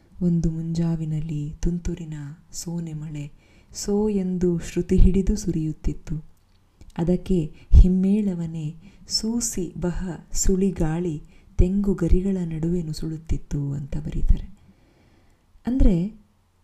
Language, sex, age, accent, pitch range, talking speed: Kannada, female, 20-39, native, 155-185 Hz, 85 wpm